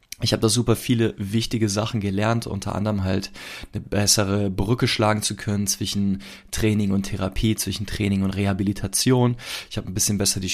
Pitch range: 95-110 Hz